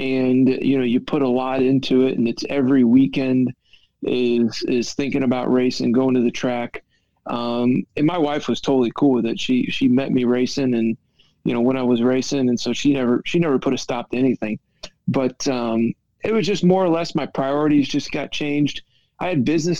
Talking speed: 210 wpm